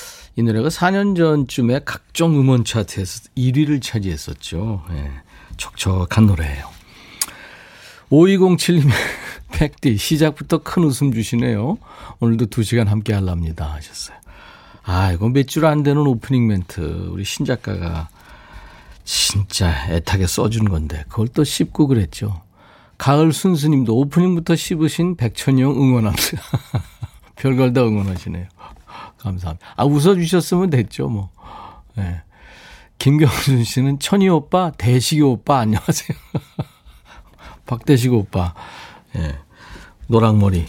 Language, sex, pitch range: Korean, male, 95-145 Hz